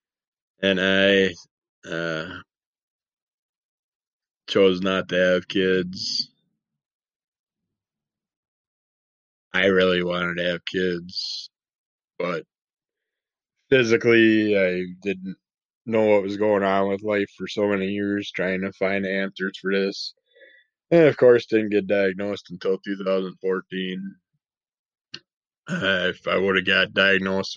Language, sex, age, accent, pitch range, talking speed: English, male, 20-39, American, 95-105 Hz, 110 wpm